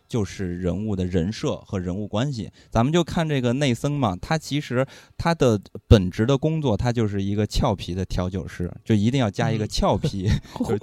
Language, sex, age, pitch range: Chinese, male, 20-39, 100-130 Hz